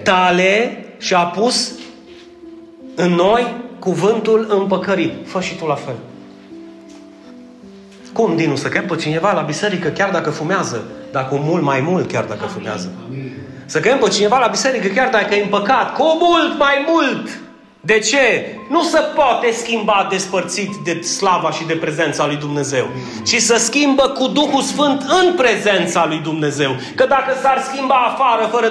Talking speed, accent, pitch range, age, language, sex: 160 wpm, native, 170-250 Hz, 30-49, Romanian, male